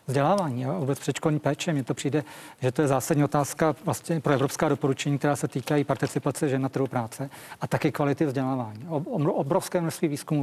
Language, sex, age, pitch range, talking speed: Czech, male, 40-59, 135-165 Hz, 190 wpm